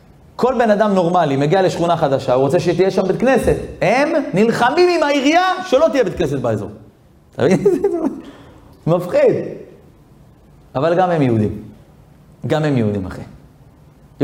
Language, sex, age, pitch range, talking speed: Hebrew, male, 30-49, 135-185 Hz, 130 wpm